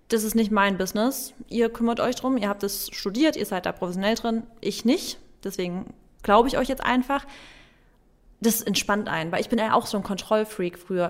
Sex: female